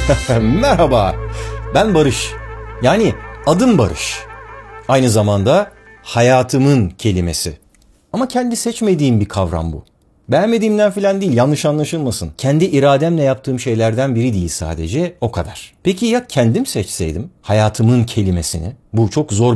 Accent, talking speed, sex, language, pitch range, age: native, 120 wpm, male, Turkish, 105-170 Hz, 50-69